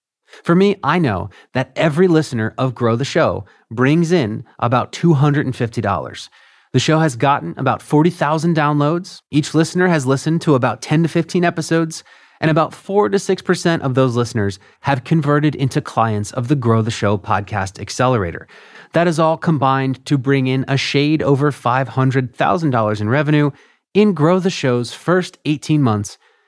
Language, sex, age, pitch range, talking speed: English, male, 30-49, 125-175 Hz, 160 wpm